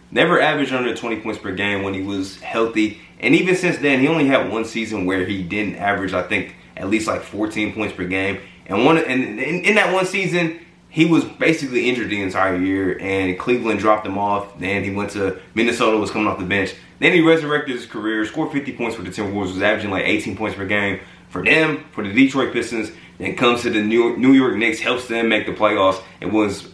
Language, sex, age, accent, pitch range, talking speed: English, male, 20-39, American, 95-120 Hz, 230 wpm